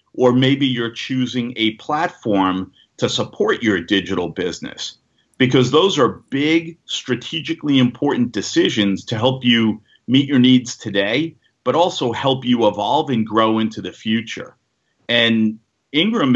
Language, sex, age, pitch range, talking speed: English, male, 40-59, 105-130 Hz, 135 wpm